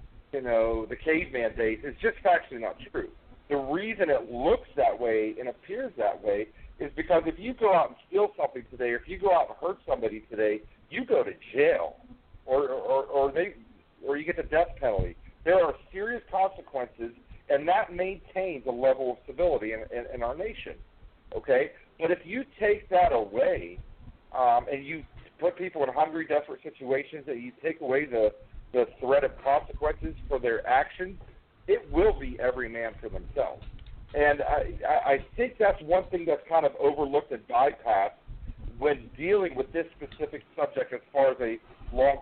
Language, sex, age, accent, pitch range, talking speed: English, male, 50-69, American, 125-185 Hz, 180 wpm